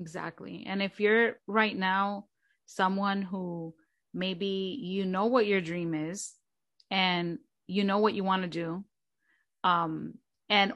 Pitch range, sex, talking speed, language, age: 185-220 Hz, female, 140 wpm, English, 30-49